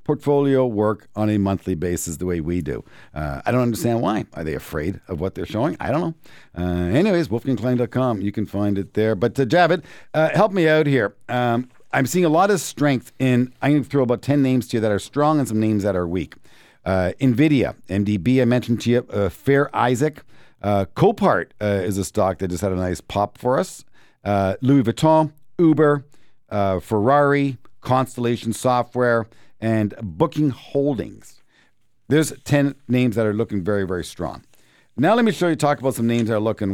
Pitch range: 105-155 Hz